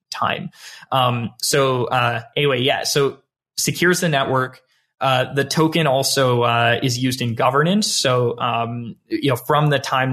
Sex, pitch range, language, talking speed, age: male, 120-135 Hz, English, 155 wpm, 20-39